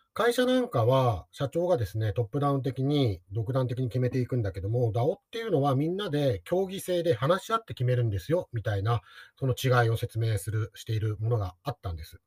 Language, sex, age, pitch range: Japanese, male, 40-59, 110-165 Hz